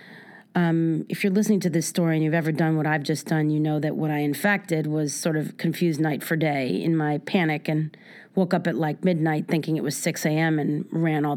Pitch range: 155-200 Hz